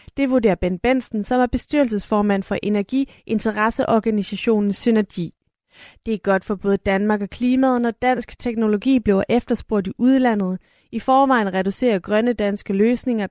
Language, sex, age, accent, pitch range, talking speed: Danish, female, 30-49, native, 200-245 Hz, 140 wpm